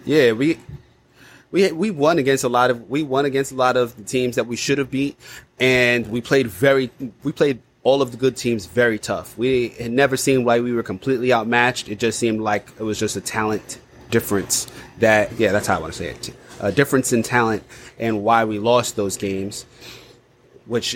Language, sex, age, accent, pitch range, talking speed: English, male, 30-49, American, 115-135 Hz, 210 wpm